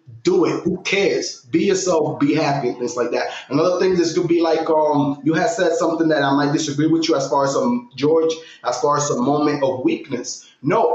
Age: 30-49